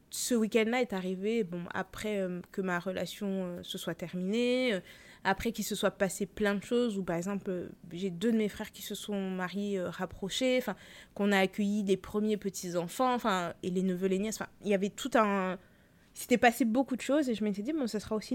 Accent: French